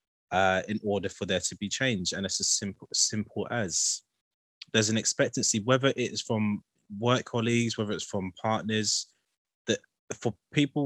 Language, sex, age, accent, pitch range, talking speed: English, male, 20-39, British, 100-120 Hz, 160 wpm